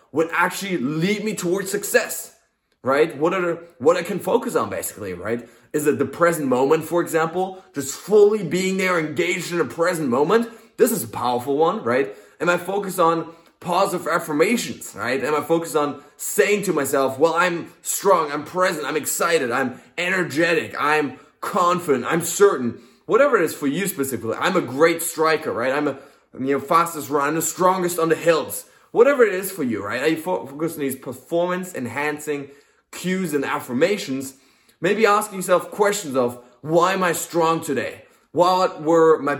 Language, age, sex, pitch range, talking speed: English, 20-39, male, 140-180 Hz, 180 wpm